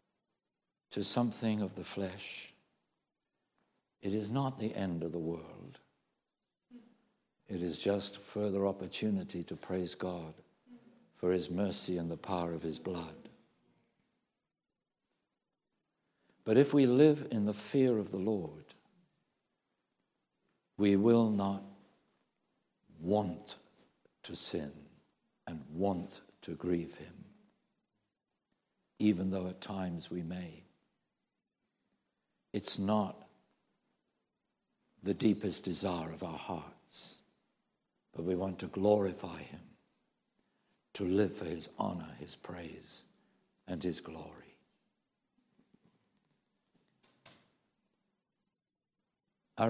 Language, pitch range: English, 90-110 Hz